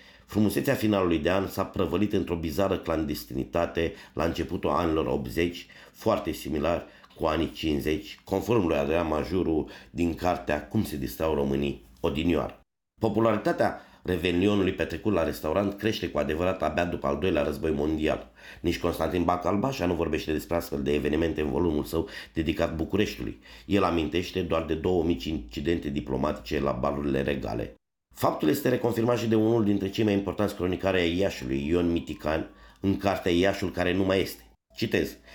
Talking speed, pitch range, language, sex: 155 wpm, 75-95 Hz, English, male